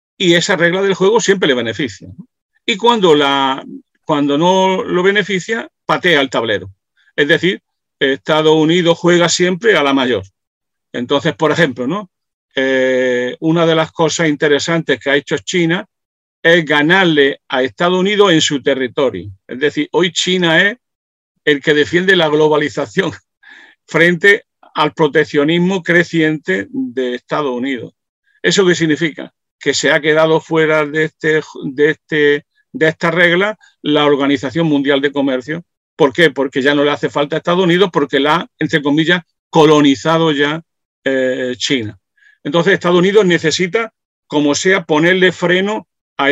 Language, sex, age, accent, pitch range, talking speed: Spanish, male, 50-69, Spanish, 145-180 Hz, 145 wpm